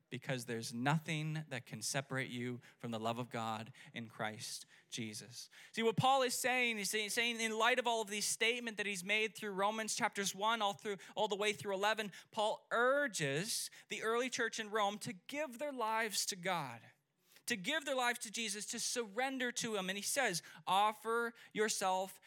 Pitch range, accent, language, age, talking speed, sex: 155-225 Hz, American, English, 20-39, 190 wpm, male